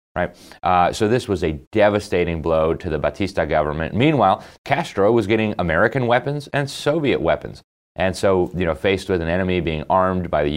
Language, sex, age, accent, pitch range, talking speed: English, male, 30-49, American, 80-100 Hz, 185 wpm